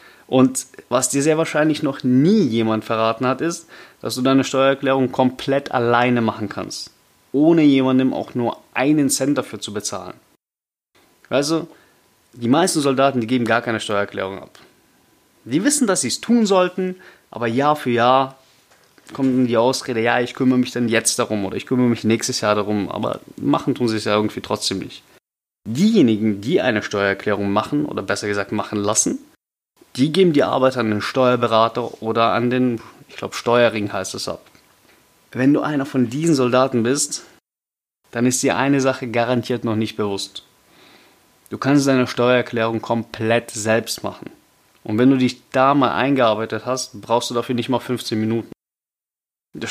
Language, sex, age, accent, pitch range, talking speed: German, male, 30-49, German, 110-135 Hz, 170 wpm